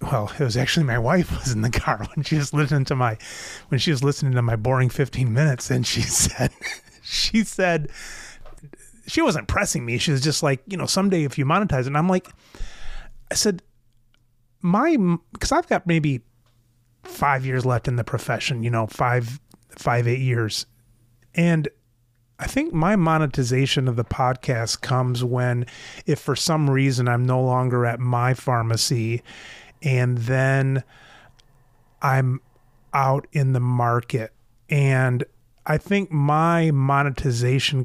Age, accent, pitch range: 30-49, American, 120-150 Hz